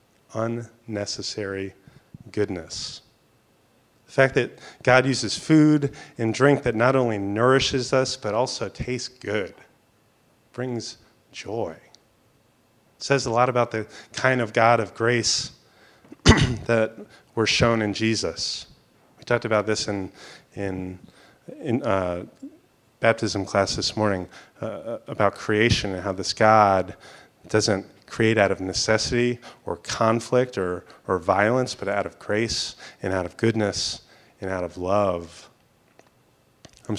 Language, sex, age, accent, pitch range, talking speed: English, male, 30-49, American, 95-120 Hz, 130 wpm